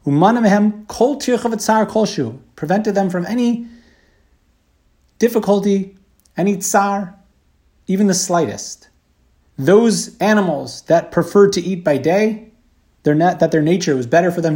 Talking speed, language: 105 wpm, English